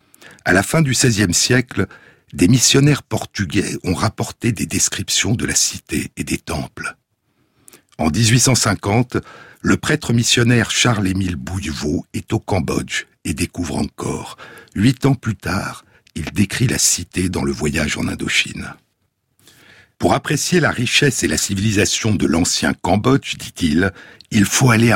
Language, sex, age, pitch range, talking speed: French, male, 60-79, 90-125 Hz, 140 wpm